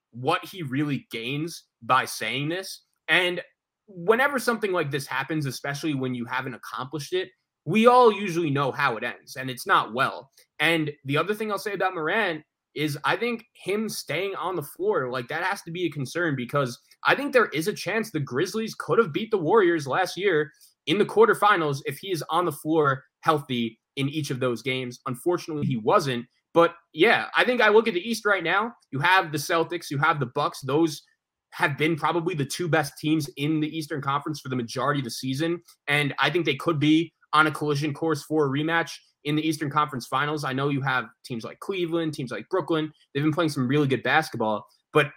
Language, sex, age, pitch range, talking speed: English, male, 20-39, 135-175 Hz, 215 wpm